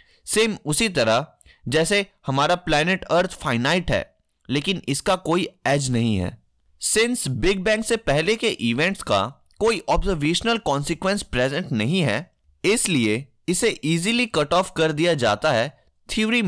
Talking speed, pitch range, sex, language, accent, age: 60 wpm, 130-195 Hz, male, Hindi, native, 20-39